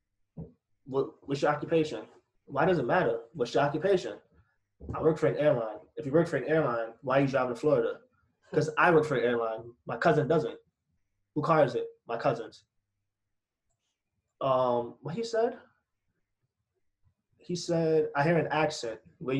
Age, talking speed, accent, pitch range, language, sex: 20-39, 165 wpm, American, 115-155 Hz, English, male